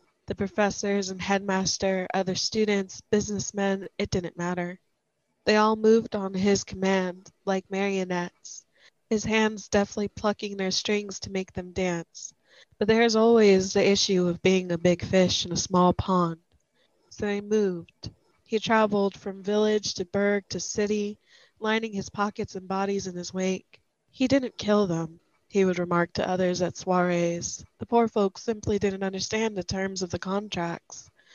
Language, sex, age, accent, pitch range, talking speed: English, female, 20-39, American, 180-210 Hz, 160 wpm